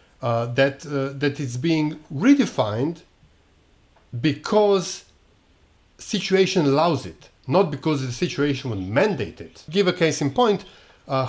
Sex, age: male, 50-69